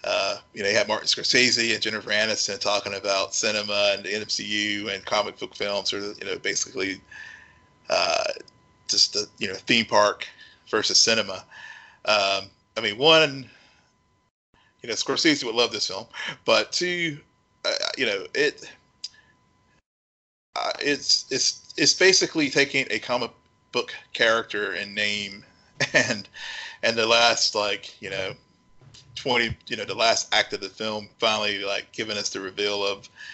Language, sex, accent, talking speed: English, male, American, 155 wpm